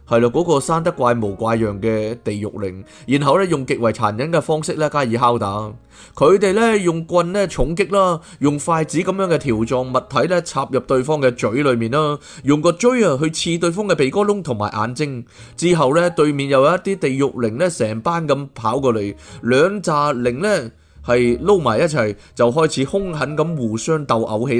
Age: 20-39